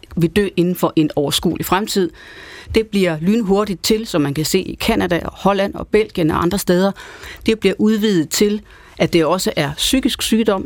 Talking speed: 185 wpm